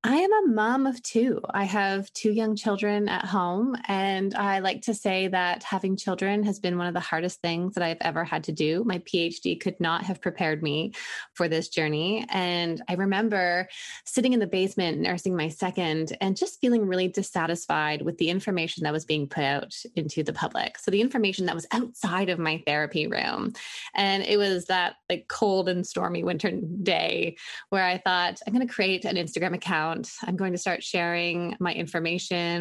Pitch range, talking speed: 170-215 Hz, 195 wpm